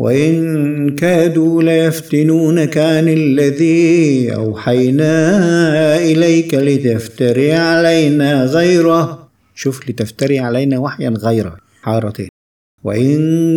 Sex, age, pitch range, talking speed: male, 50-69, 120-160 Hz, 75 wpm